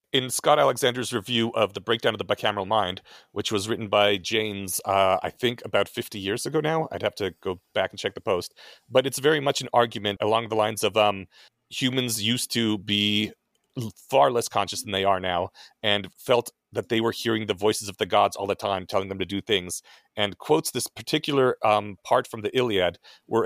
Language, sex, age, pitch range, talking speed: English, male, 40-59, 105-130 Hz, 215 wpm